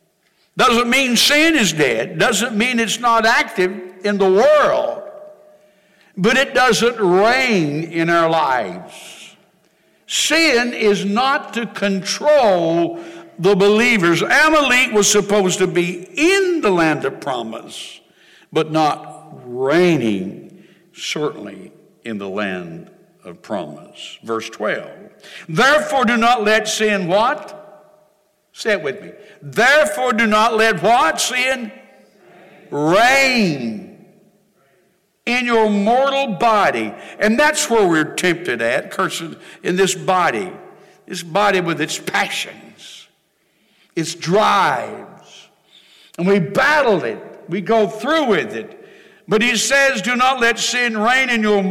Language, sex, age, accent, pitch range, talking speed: English, male, 60-79, American, 185-250 Hz, 120 wpm